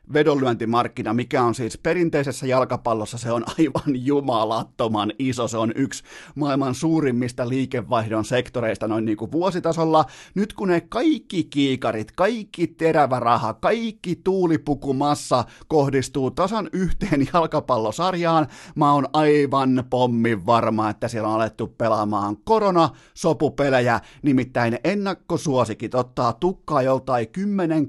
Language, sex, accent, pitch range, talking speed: Finnish, male, native, 120-155 Hz, 115 wpm